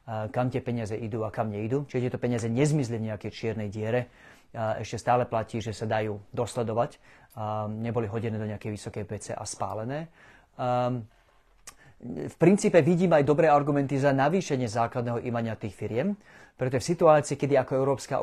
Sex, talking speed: male, 155 wpm